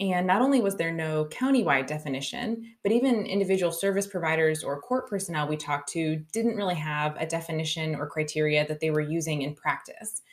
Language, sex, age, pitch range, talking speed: English, female, 20-39, 155-185 Hz, 185 wpm